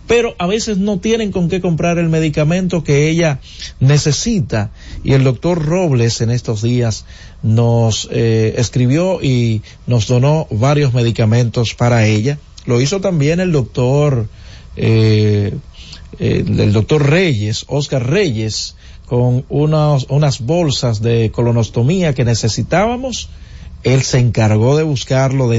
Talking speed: 130 wpm